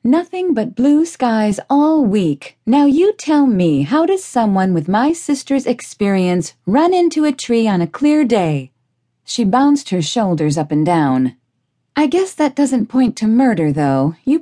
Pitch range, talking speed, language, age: 160-265 Hz, 170 wpm, English, 40-59